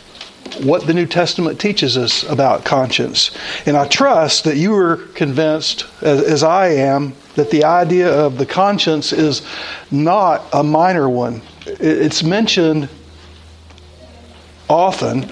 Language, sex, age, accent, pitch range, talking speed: English, male, 60-79, American, 140-175 Hz, 125 wpm